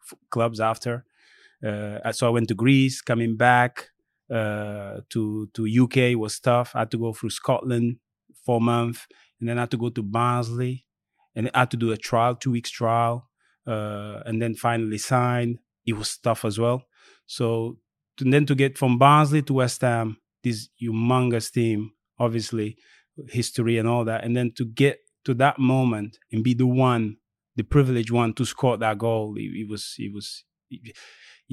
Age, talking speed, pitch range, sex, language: 30-49, 180 wpm, 110-125 Hz, male, English